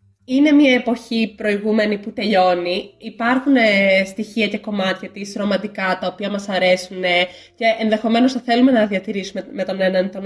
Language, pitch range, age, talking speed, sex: Greek, 185-230 Hz, 20-39, 165 wpm, female